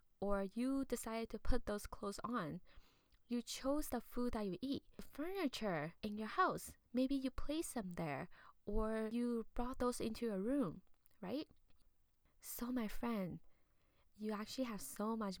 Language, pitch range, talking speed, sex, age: English, 180-230 Hz, 160 wpm, female, 10-29